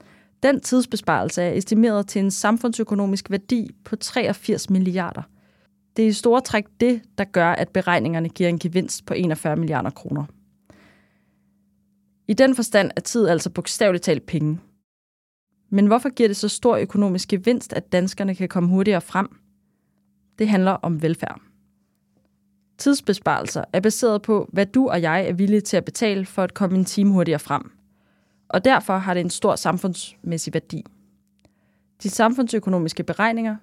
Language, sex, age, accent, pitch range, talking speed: Danish, female, 20-39, native, 165-220 Hz, 155 wpm